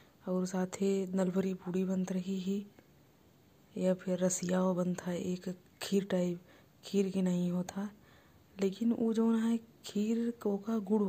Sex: female